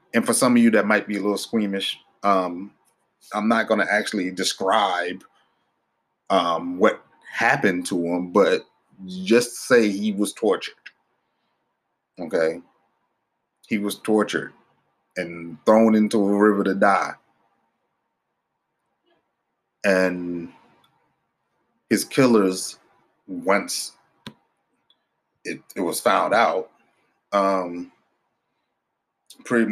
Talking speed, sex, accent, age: 100 wpm, male, American, 30-49